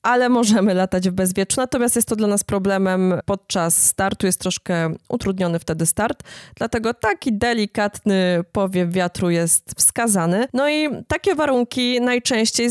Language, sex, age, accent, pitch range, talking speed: Polish, female, 20-39, native, 185-220 Hz, 140 wpm